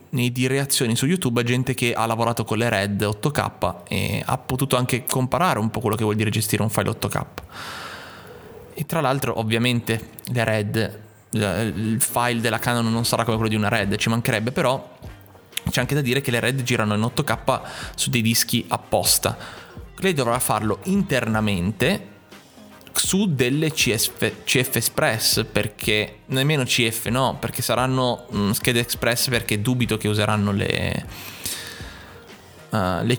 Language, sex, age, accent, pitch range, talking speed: Italian, male, 20-39, native, 105-125 Hz, 155 wpm